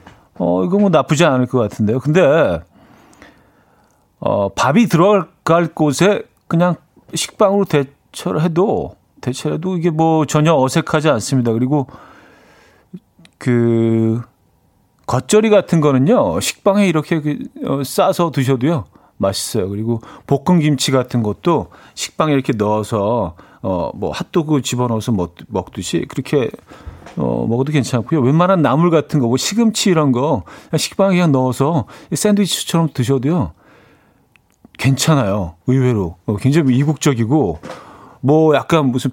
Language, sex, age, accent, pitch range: Korean, male, 40-59, native, 120-165 Hz